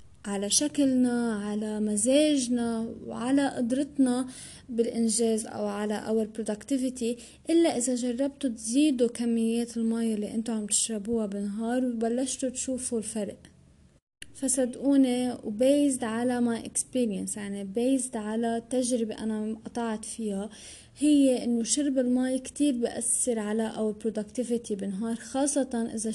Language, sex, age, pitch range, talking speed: Arabic, female, 20-39, 225-270 Hz, 110 wpm